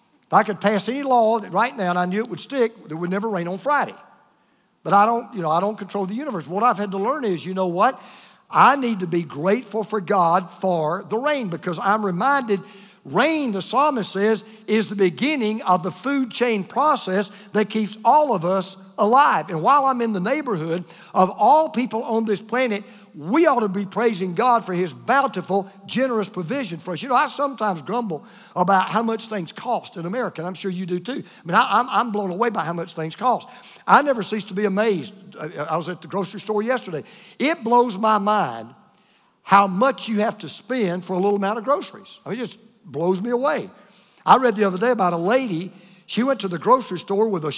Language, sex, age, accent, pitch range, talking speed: English, male, 50-69, American, 185-235 Hz, 225 wpm